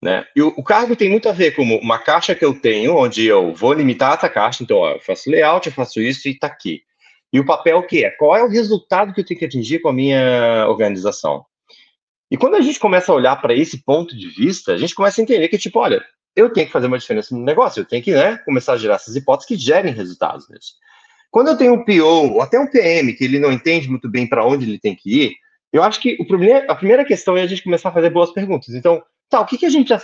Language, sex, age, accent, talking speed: Portuguese, male, 30-49, Brazilian, 275 wpm